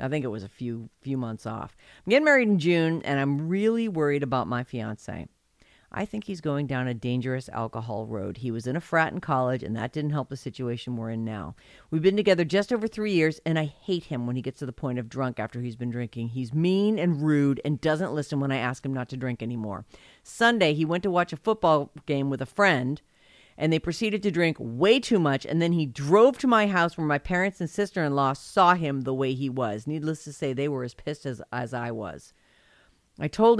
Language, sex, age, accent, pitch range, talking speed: English, female, 50-69, American, 130-180 Hz, 240 wpm